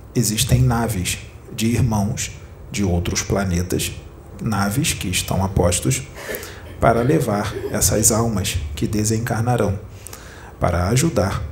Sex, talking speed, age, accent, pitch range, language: male, 100 wpm, 40-59, Brazilian, 95-115 Hz, Portuguese